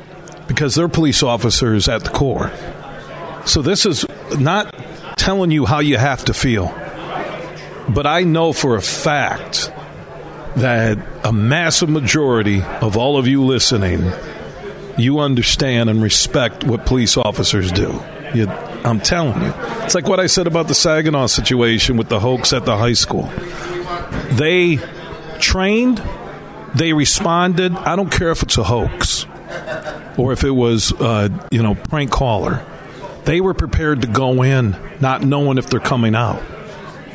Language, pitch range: English, 115-155 Hz